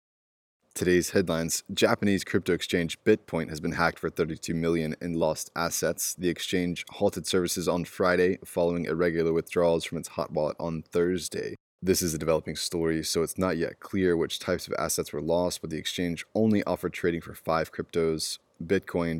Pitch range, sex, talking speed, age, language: 80-90 Hz, male, 175 wpm, 20-39, English